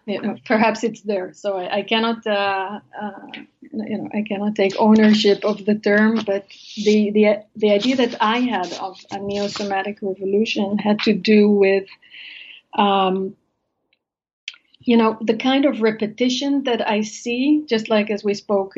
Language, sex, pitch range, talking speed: English, female, 195-225 Hz, 165 wpm